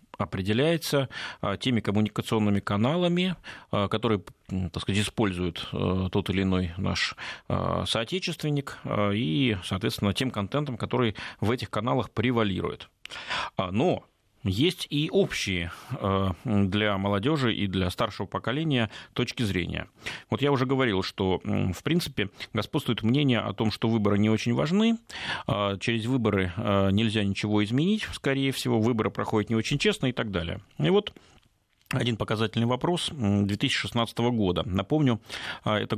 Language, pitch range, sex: Russian, 100-130 Hz, male